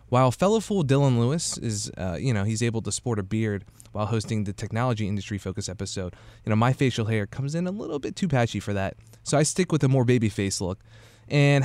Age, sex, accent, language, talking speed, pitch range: 20-39, male, American, English, 235 wpm, 110-135 Hz